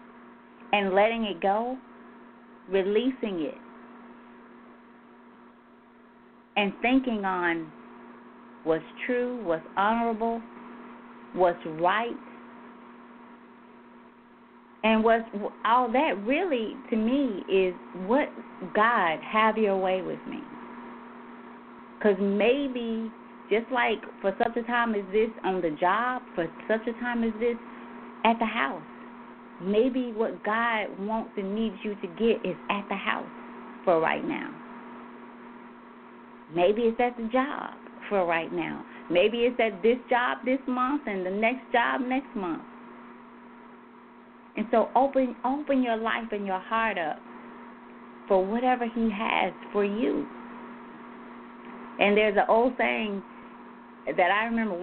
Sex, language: female, English